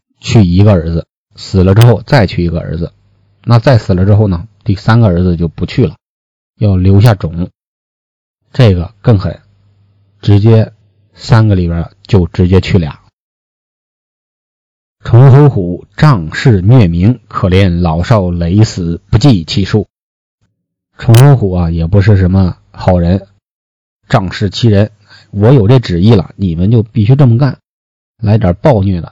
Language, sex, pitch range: Chinese, male, 90-115 Hz